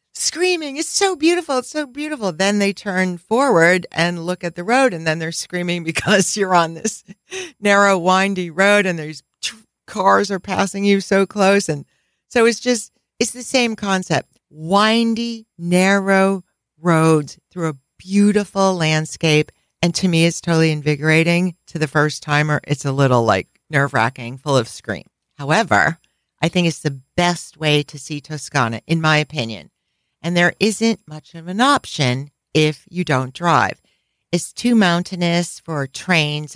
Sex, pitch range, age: female, 150-195 Hz, 50-69